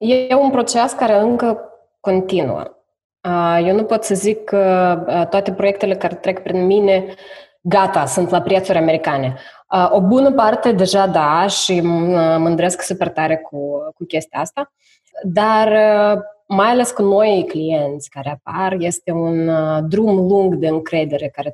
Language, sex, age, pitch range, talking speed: Romanian, female, 20-39, 165-210 Hz, 140 wpm